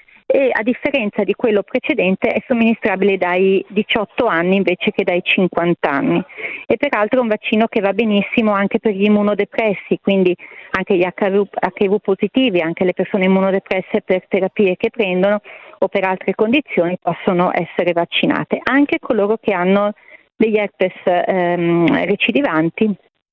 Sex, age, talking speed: female, 40-59, 145 wpm